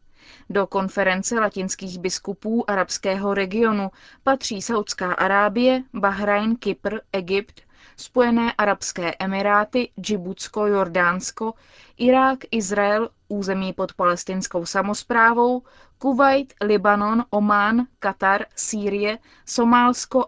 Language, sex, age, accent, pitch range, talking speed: Czech, female, 20-39, native, 190-220 Hz, 85 wpm